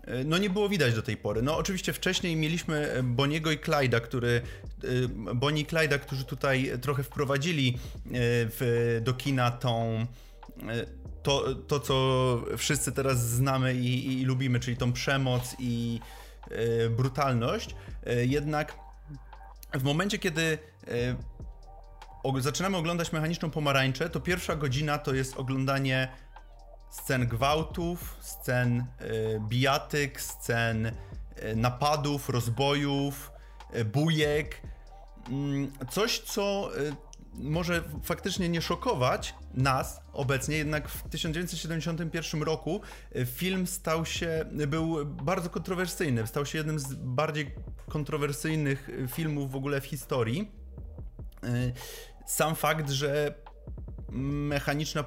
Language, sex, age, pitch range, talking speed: Polish, male, 30-49, 125-155 Hz, 105 wpm